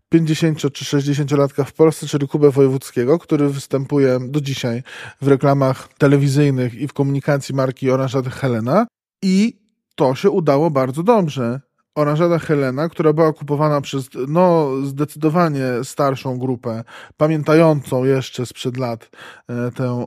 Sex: male